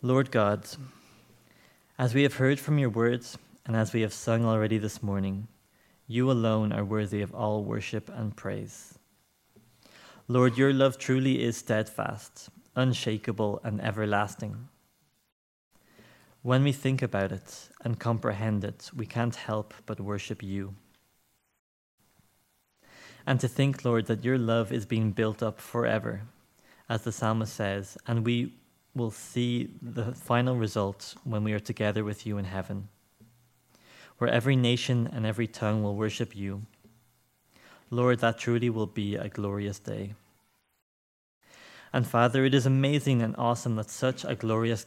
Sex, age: male, 20-39